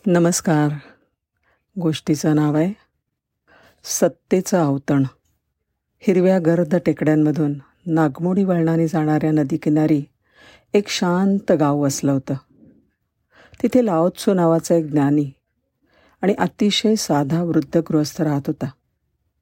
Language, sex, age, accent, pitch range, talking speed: Marathi, female, 50-69, native, 150-180 Hz, 90 wpm